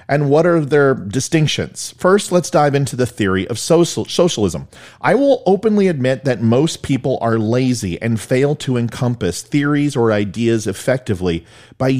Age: 40-59